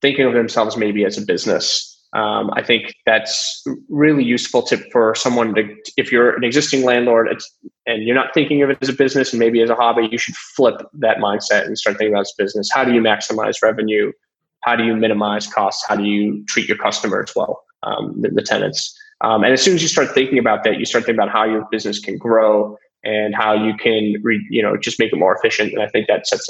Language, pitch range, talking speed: English, 110-135 Hz, 235 wpm